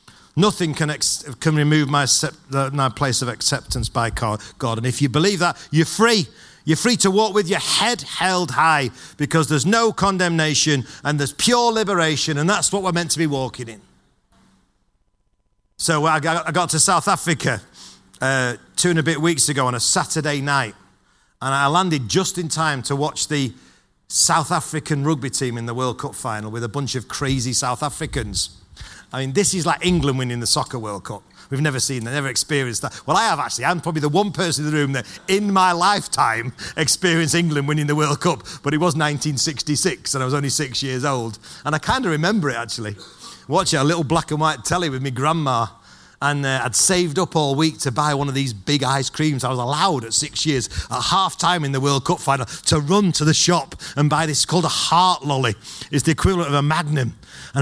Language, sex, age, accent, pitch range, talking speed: English, male, 40-59, British, 130-165 Hz, 215 wpm